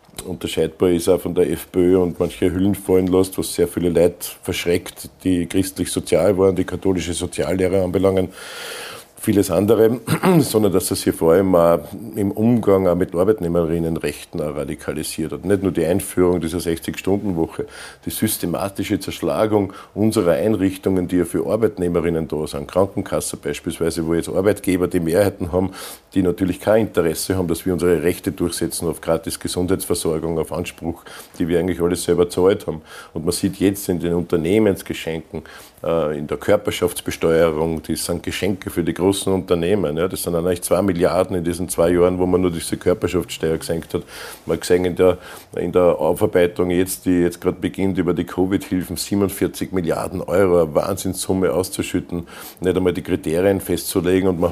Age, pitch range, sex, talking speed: 50-69, 85-95 Hz, male, 165 wpm